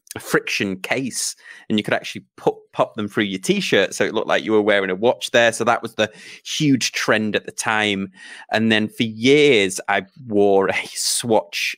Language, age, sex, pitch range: English, 30-49, male, 95-125 Hz